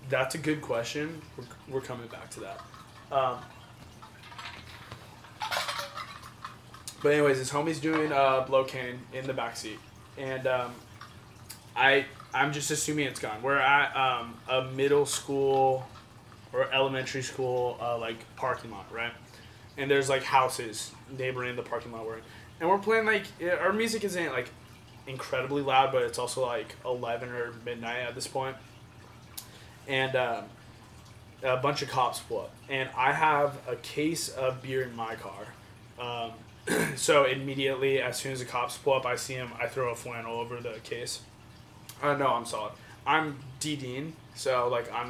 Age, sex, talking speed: 20-39, male, 160 wpm